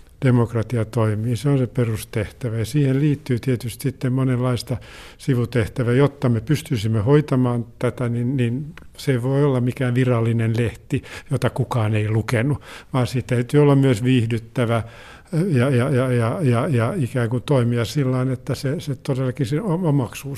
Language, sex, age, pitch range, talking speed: Finnish, male, 50-69, 115-140 Hz, 160 wpm